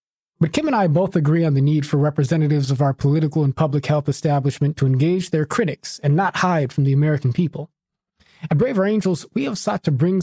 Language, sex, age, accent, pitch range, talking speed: English, male, 20-39, American, 145-180 Hz, 215 wpm